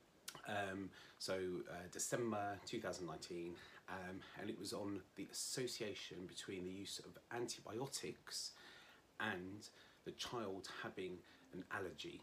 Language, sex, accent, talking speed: English, male, British, 115 wpm